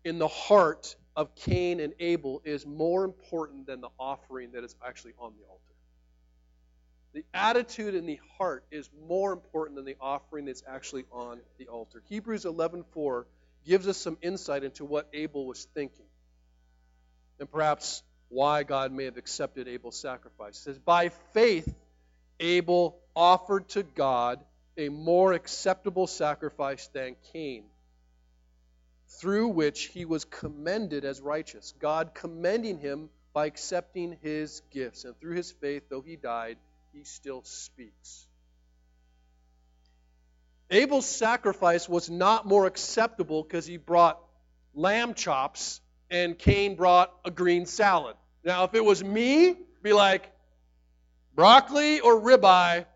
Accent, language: American, English